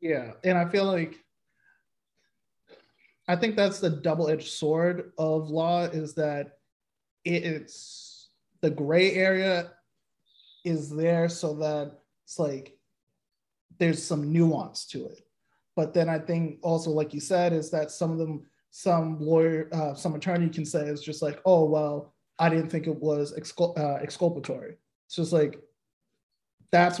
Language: English